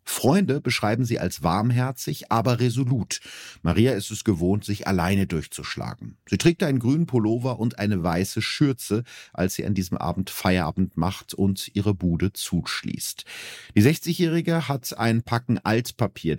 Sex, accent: male, German